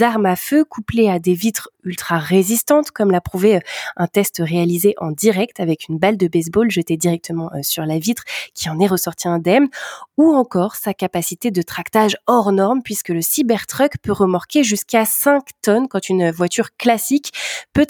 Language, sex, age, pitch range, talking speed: French, female, 20-39, 180-235 Hz, 175 wpm